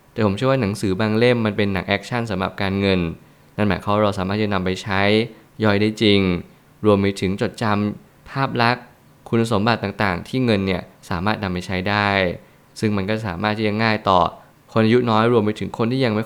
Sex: male